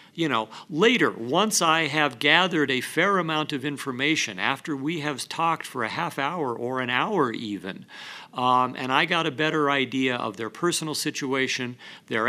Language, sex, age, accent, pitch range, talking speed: English, male, 50-69, American, 125-160 Hz, 175 wpm